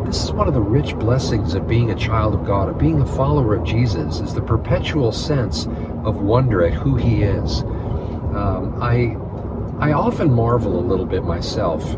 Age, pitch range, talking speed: 50-69, 95-120 Hz, 190 wpm